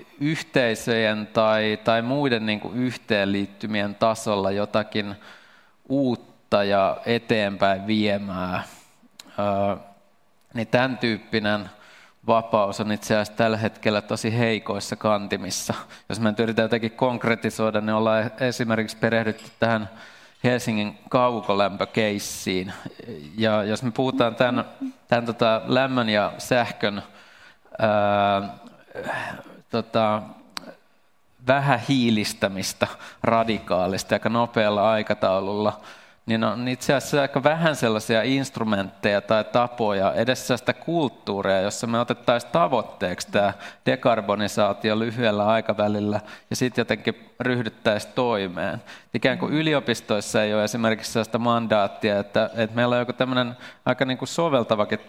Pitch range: 105-120 Hz